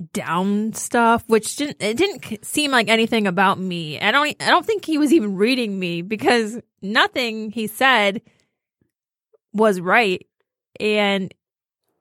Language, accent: English, American